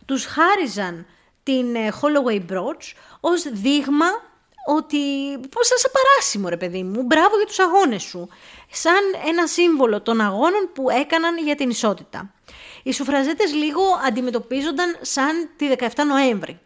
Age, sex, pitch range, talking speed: 20-39, female, 210-300 Hz, 135 wpm